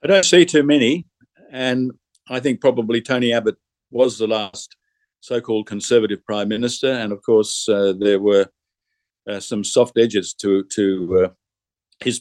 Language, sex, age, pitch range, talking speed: English, male, 50-69, 100-120 Hz, 155 wpm